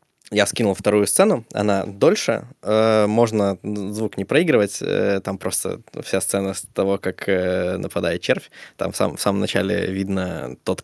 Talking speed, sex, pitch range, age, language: 165 wpm, male, 95-110 Hz, 20-39, Russian